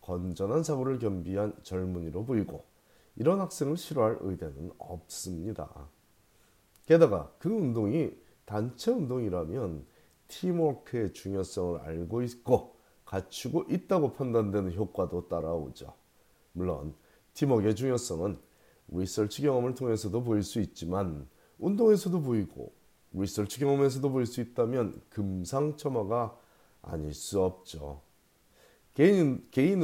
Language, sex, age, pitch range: Korean, male, 30-49, 90-135 Hz